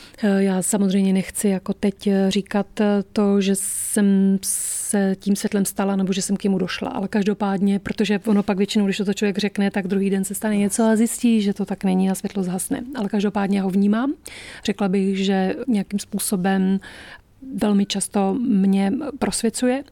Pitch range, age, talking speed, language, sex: 195-210 Hz, 30-49, 175 wpm, Czech, female